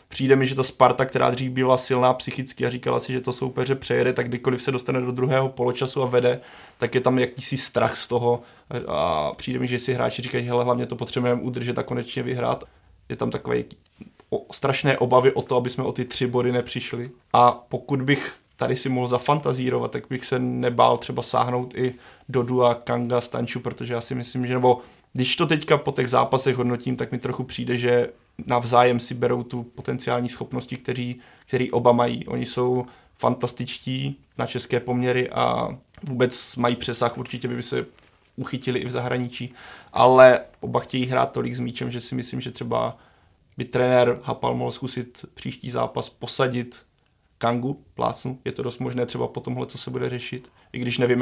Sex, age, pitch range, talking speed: male, 20-39, 120-130 Hz, 190 wpm